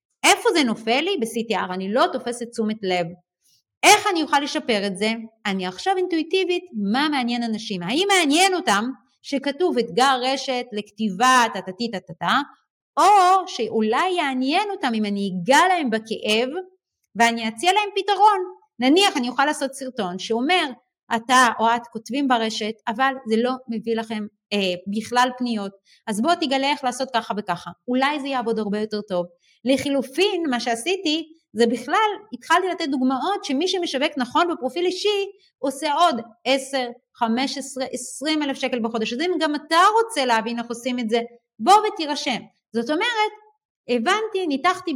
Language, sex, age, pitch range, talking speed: Hebrew, female, 30-49, 225-315 Hz, 145 wpm